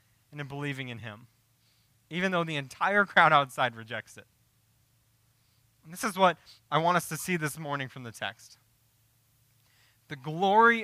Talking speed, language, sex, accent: 160 wpm, English, male, American